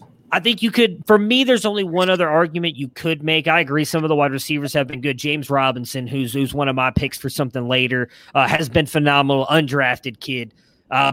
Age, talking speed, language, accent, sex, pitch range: 20-39, 230 wpm, English, American, male, 130-175 Hz